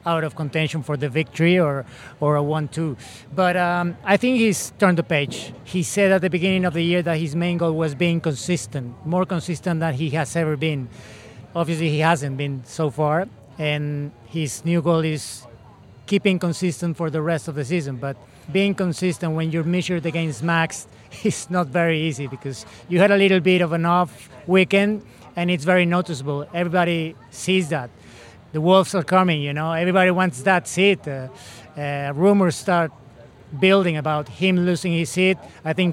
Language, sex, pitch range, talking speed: English, male, 150-180 Hz, 185 wpm